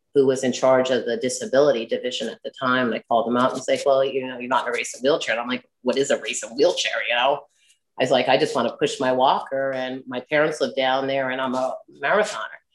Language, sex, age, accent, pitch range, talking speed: English, female, 30-49, American, 130-175 Hz, 280 wpm